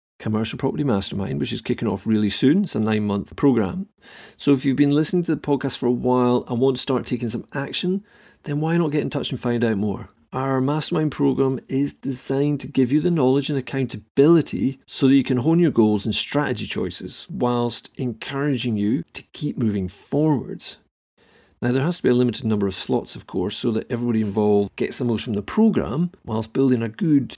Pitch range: 115-145 Hz